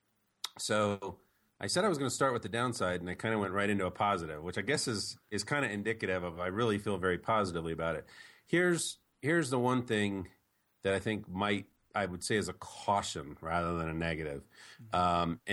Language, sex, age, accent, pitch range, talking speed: English, male, 40-59, American, 95-125 Hz, 225 wpm